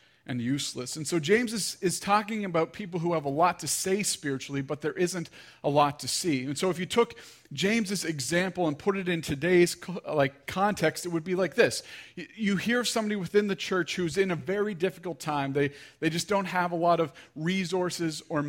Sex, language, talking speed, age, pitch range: male, English, 225 wpm, 40-59, 140-180 Hz